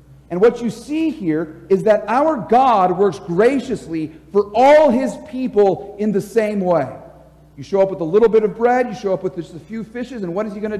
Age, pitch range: 50-69, 170-240 Hz